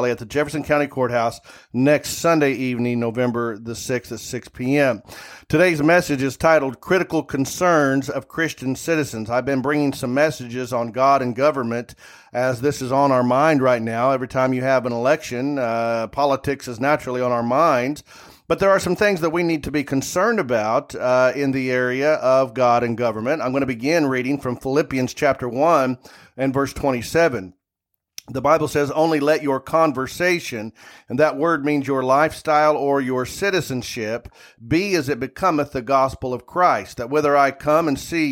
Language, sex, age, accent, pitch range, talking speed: English, male, 40-59, American, 130-155 Hz, 180 wpm